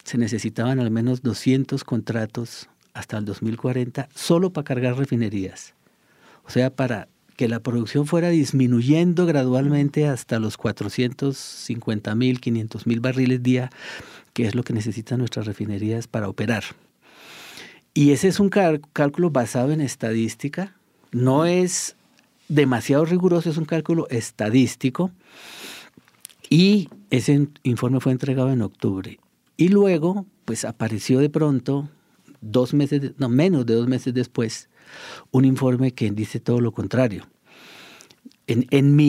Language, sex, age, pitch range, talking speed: English, male, 50-69, 115-145 Hz, 135 wpm